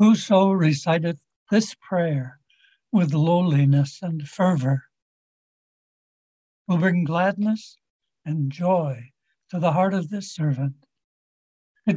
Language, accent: English, American